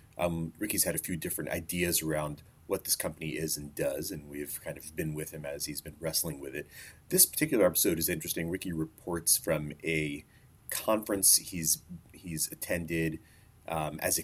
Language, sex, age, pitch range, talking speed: English, male, 30-49, 80-95 Hz, 180 wpm